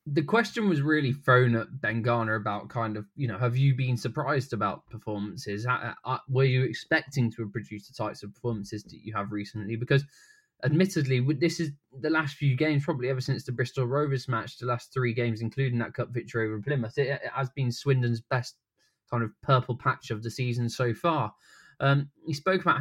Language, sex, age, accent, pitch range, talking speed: English, male, 20-39, British, 115-140 Hz, 200 wpm